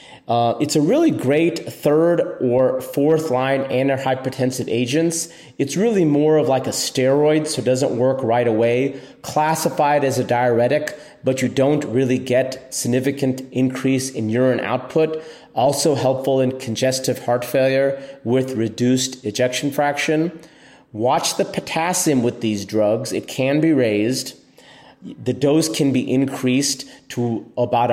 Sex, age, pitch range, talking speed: male, 30-49, 120-145 Hz, 140 wpm